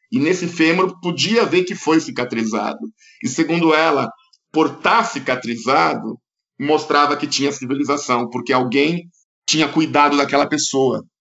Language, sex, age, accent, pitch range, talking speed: Portuguese, male, 50-69, Brazilian, 135-180 Hz, 130 wpm